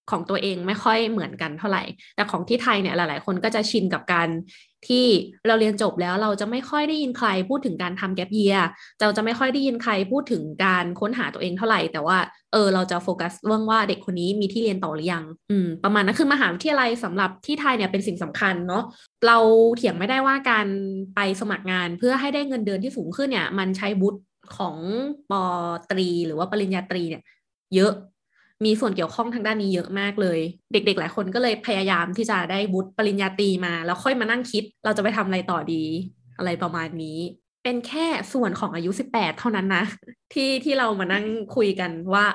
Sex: female